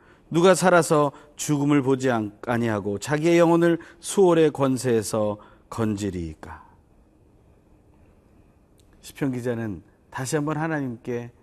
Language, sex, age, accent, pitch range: Korean, male, 40-59, native, 100-145 Hz